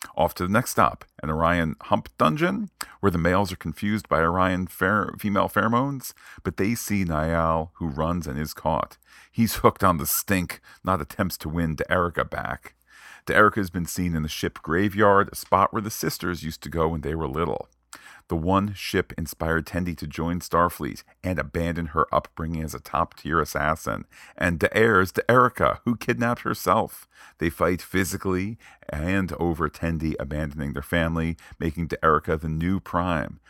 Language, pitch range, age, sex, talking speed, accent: English, 80-100 Hz, 40-59, male, 170 wpm, American